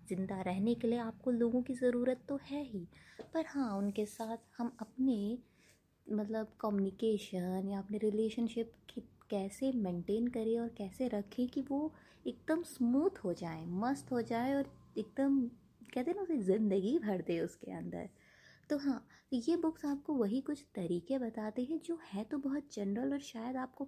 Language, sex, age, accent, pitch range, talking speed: Hindi, female, 20-39, native, 205-265 Hz, 170 wpm